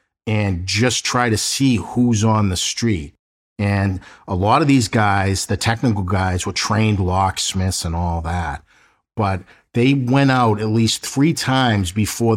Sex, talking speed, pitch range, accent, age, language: male, 160 wpm, 90-110 Hz, American, 50-69, English